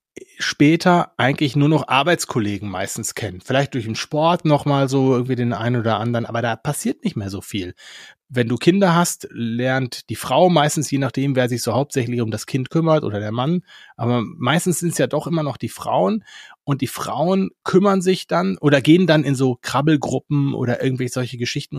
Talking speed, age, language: 200 wpm, 30-49, German